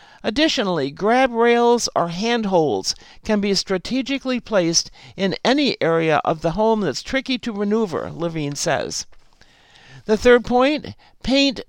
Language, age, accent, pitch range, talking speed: English, 60-79, American, 185-245 Hz, 130 wpm